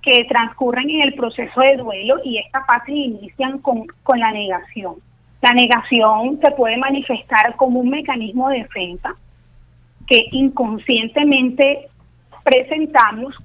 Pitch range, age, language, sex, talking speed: 215-270 Hz, 30-49, Spanish, female, 125 wpm